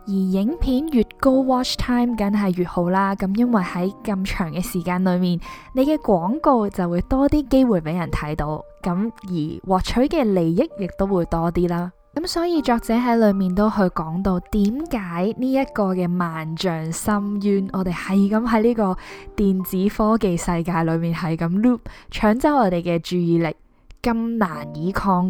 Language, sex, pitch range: Chinese, female, 170-225 Hz